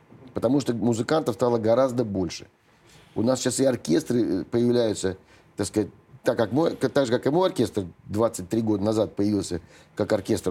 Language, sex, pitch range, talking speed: Russian, male, 100-125 Hz, 165 wpm